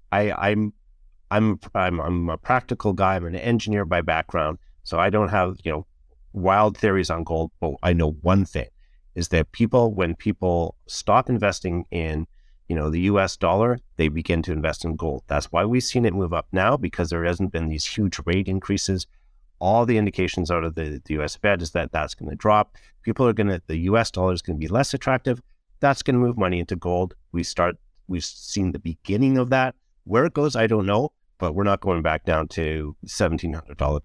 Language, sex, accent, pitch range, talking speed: English, male, American, 80-105 Hz, 210 wpm